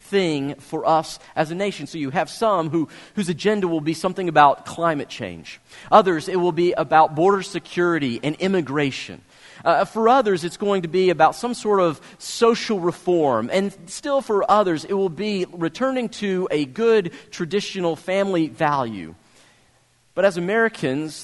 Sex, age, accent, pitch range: male, 40-59, American, 145-195 Hz